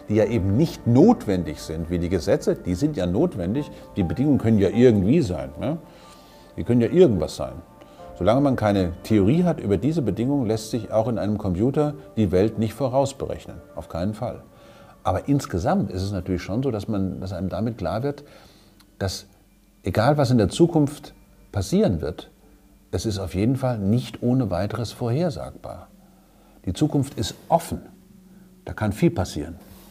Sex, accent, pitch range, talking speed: male, German, 95-120 Hz, 165 wpm